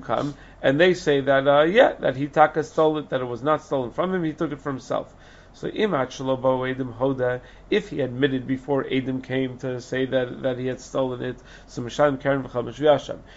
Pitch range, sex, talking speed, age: 125-150 Hz, male, 205 wpm, 30-49